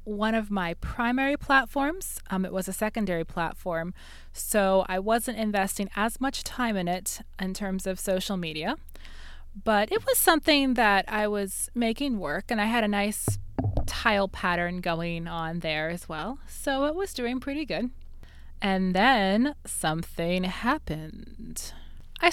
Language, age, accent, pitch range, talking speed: English, 20-39, American, 180-255 Hz, 155 wpm